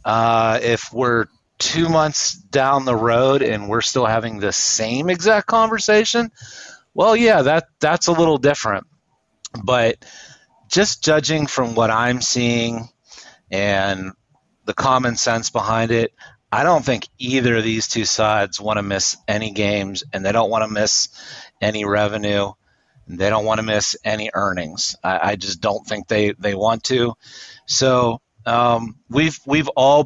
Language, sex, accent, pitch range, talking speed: English, male, American, 110-135 Hz, 155 wpm